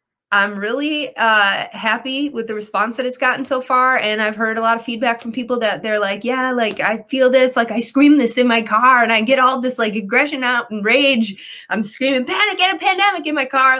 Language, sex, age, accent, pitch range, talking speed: English, female, 20-39, American, 195-250 Hz, 240 wpm